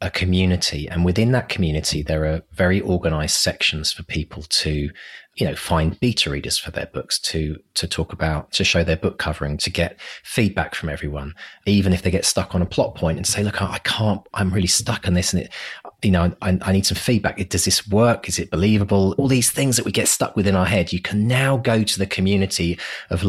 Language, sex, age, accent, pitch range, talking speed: English, male, 30-49, British, 85-105 Hz, 230 wpm